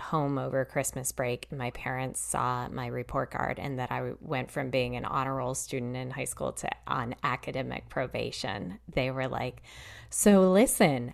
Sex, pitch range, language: female, 130-160 Hz, English